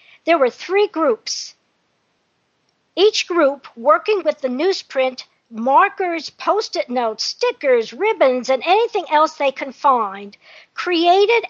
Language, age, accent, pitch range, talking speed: English, 50-69, American, 255-360 Hz, 115 wpm